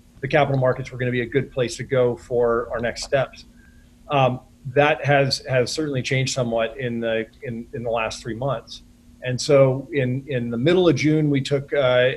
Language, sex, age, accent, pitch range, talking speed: English, male, 40-59, American, 120-140 Hz, 205 wpm